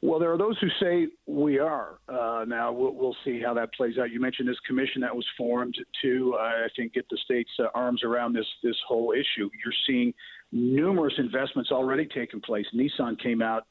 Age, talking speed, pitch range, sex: 50-69, 210 wpm, 115-130 Hz, male